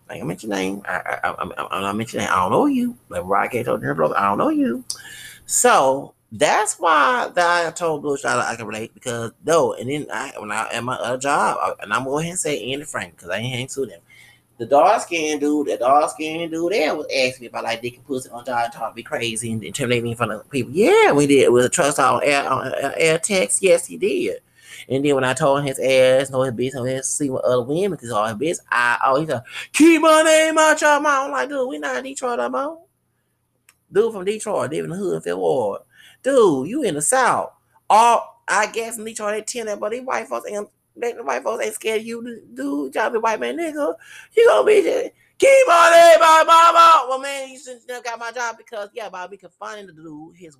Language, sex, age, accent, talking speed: English, male, 30-49, American, 240 wpm